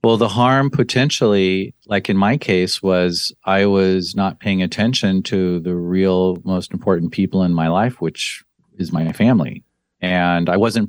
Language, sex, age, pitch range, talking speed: English, male, 40-59, 90-110 Hz, 165 wpm